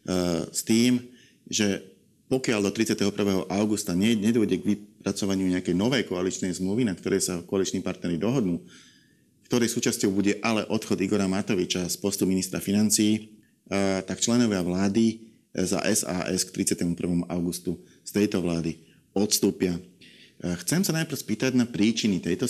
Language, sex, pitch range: Slovak, male, 95-110 Hz